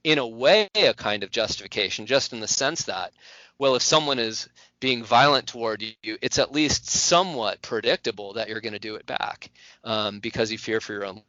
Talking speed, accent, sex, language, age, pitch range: 205 wpm, American, male, English, 30-49, 110-135 Hz